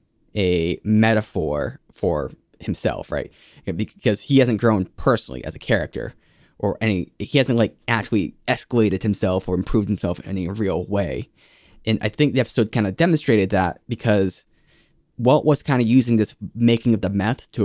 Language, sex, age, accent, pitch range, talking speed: English, male, 10-29, American, 100-120 Hz, 165 wpm